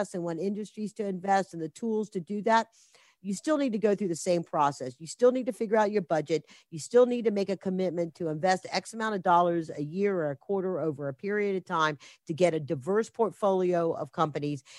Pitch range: 175-220 Hz